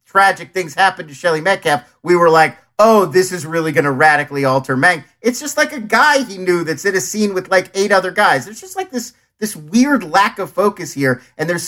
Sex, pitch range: male, 135-190 Hz